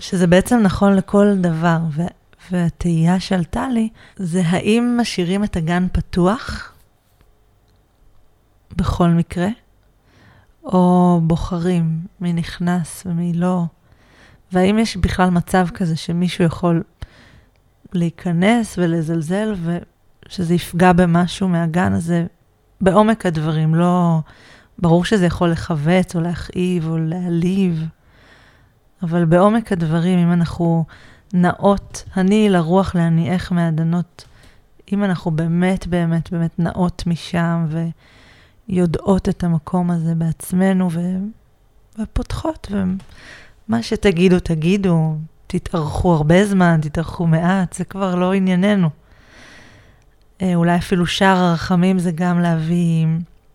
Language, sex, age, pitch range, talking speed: Hebrew, female, 20-39, 165-185 Hz, 100 wpm